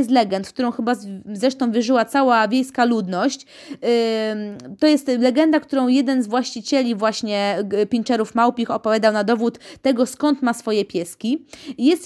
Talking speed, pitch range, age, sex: 140 wpm, 225-285 Hz, 20-39, female